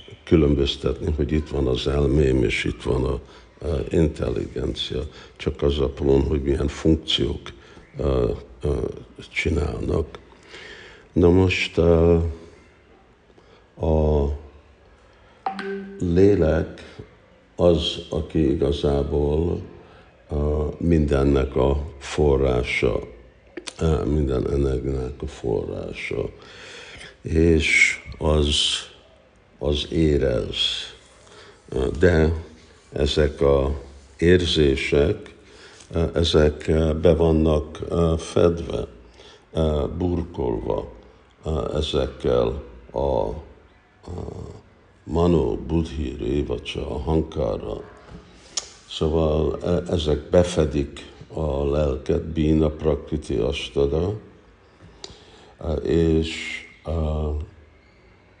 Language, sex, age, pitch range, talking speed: Hungarian, male, 60-79, 75-85 Hz, 65 wpm